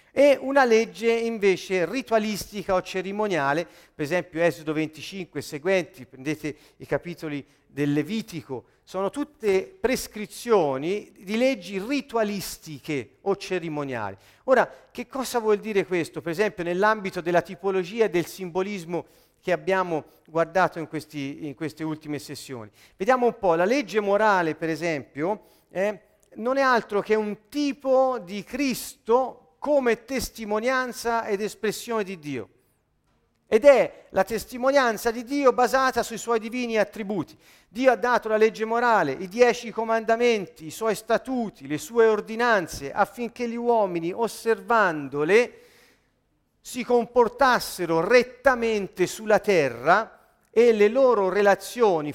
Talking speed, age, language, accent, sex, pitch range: 130 wpm, 40-59, Italian, native, male, 170-235 Hz